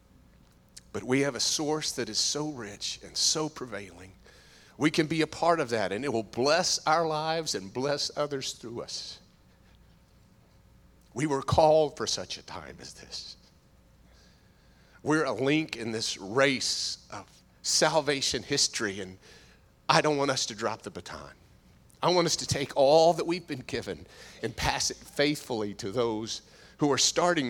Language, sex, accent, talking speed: English, male, American, 165 wpm